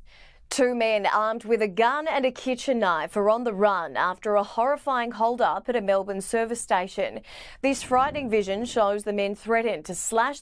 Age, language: 20-39, English